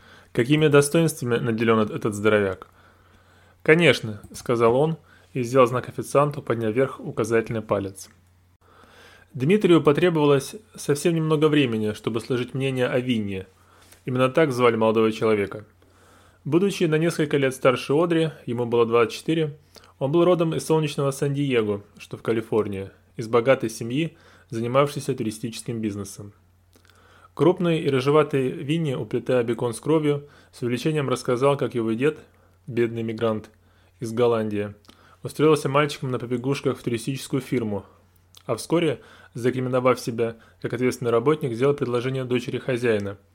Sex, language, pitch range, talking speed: male, Russian, 110-140 Hz, 125 wpm